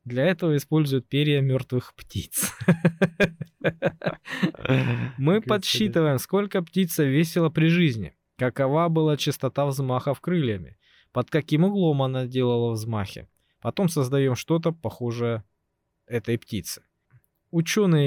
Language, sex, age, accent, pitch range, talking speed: Russian, male, 20-39, native, 125-165 Hz, 105 wpm